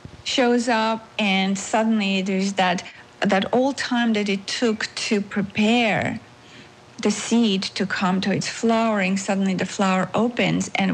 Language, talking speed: English, 145 wpm